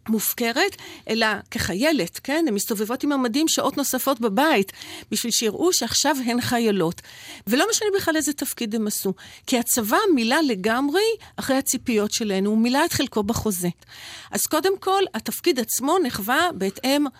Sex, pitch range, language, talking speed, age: female, 210-290 Hz, Hebrew, 145 wpm, 50-69